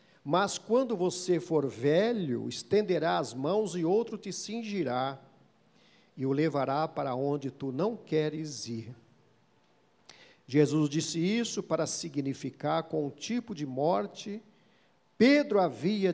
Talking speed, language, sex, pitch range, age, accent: 125 wpm, Portuguese, male, 145-200 Hz, 50-69, Brazilian